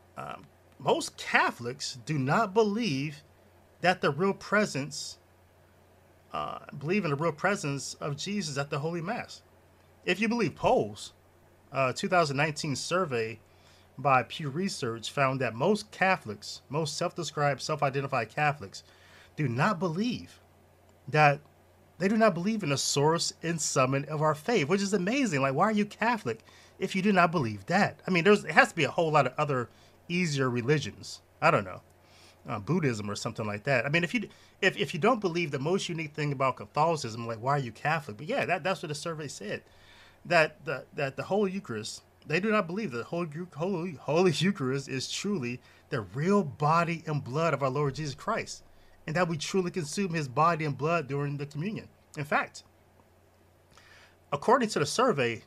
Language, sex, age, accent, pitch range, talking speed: English, male, 30-49, American, 115-180 Hz, 180 wpm